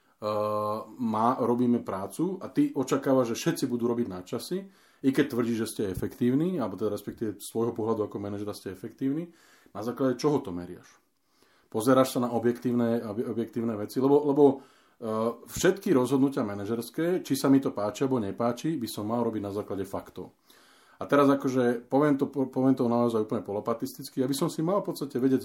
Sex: male